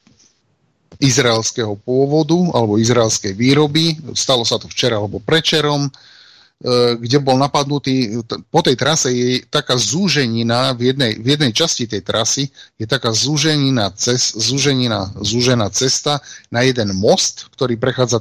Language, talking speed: Slovak, 130 wpm